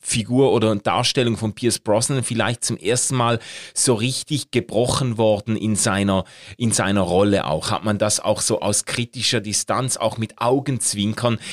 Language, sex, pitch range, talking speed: German, male, 110-145 Hz, 160 wpm